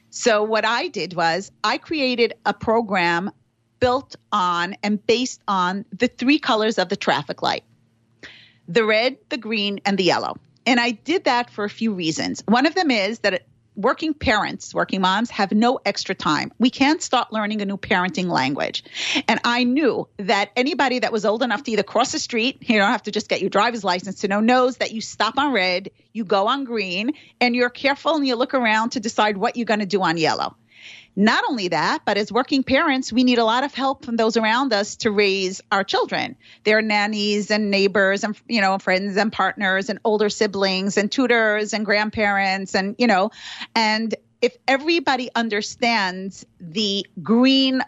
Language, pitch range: English, 195-245 Hz